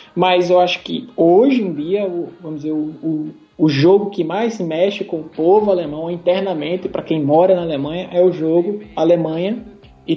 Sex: male